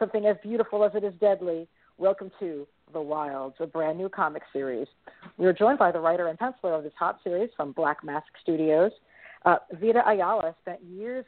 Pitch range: 165-215 Hz